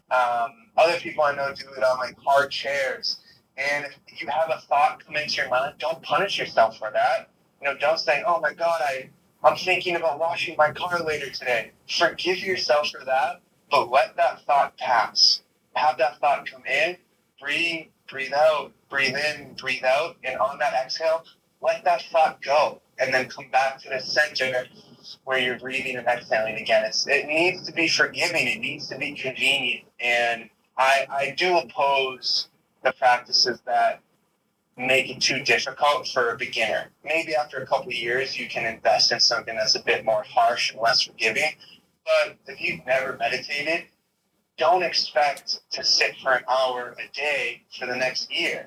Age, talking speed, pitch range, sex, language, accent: 20-39, 180 wpm, 130-165 Hz, male, English, American